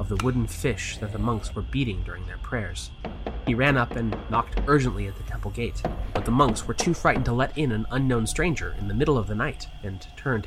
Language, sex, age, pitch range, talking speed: English, male, 20-39, 90-125 Hz, 240 wpm